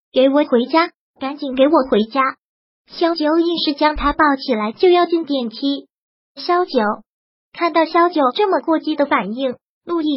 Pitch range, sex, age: 270-335 Hz, male, 20-39